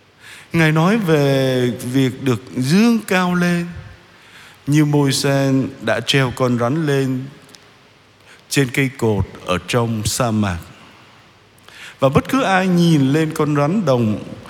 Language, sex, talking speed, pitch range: Vietnamese, male, 130 wpm, 115-155 Hz